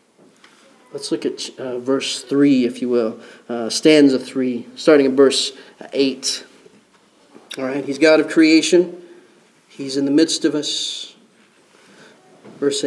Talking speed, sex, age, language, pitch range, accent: 135 wpm, male, 40-59, English, 140-190 Hz, American